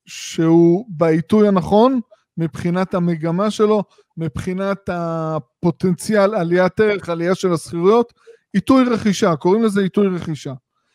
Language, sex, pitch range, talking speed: Hebrew, male, 170-220 Hz, 105 wpm